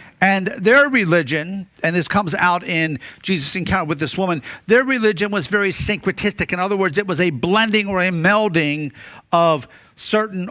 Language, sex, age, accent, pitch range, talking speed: English, male, 50-69, American, 150-200 Hz, 170 wpm